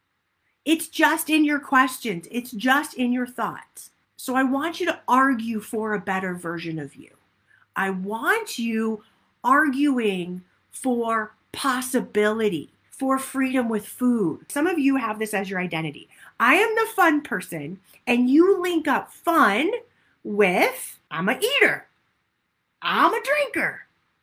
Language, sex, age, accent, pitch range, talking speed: English, female, 40-59, American, 200-295 Hz, 140 wpm